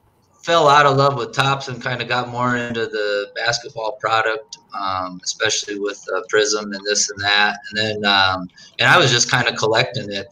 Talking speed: 205 wpm